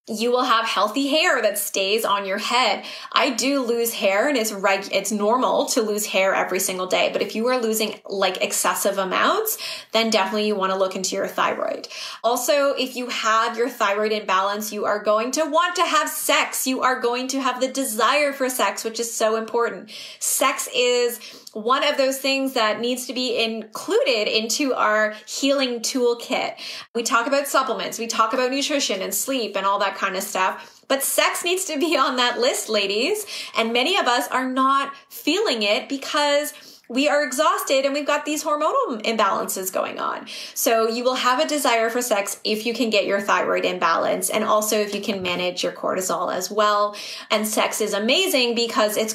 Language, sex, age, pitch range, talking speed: English, female, 20-39, 210-270 Hz, 195 wpm